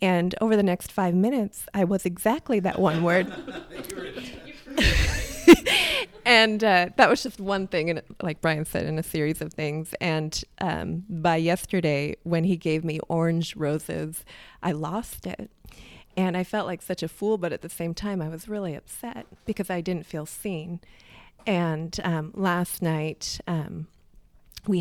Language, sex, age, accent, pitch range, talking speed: English, female, 30-49, American, 165-190 Hz, 160 wpm